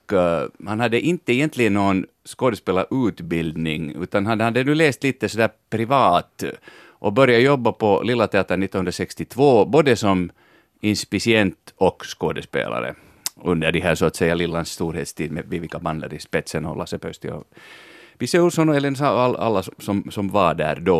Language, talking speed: Swedish, 150 wpm